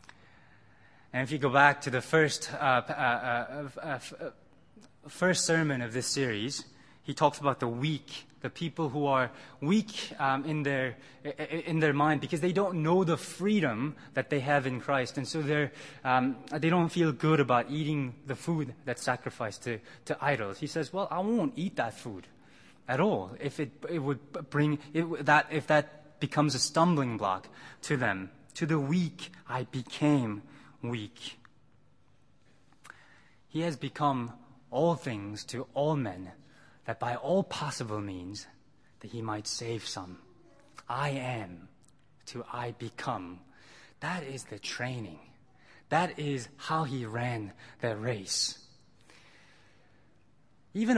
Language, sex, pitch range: English, male, 120-155 Hz